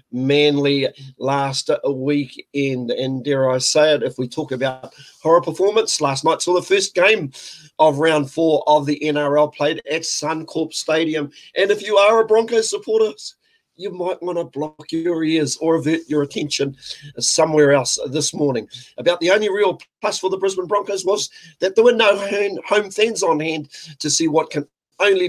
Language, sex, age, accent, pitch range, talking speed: English, male, 40-59, Australian, 145-185 Hz, 180 wpm